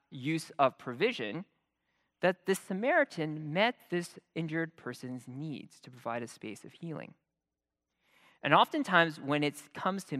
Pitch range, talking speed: 125-195 Hz, 135 wpm